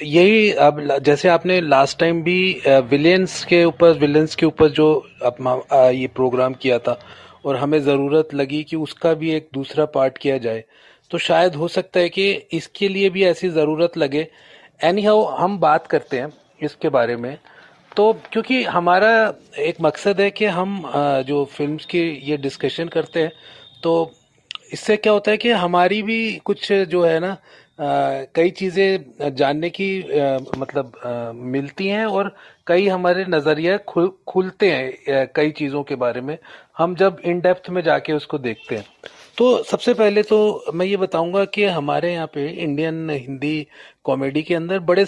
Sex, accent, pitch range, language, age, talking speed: male, native, 145-190 Hz, Hindi, 30-49, 170 wpm